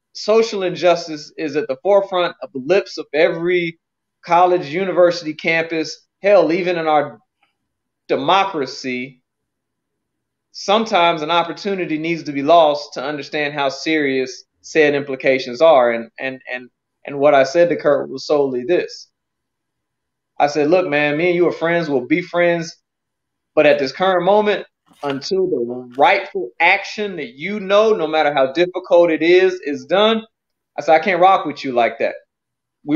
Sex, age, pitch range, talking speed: male, 30-49, 150-195 Hz, 160 wpm